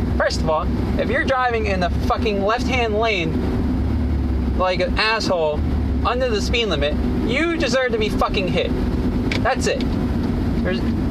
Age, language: 30-49, English